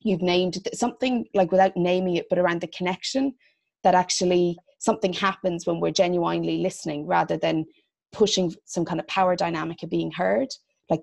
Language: English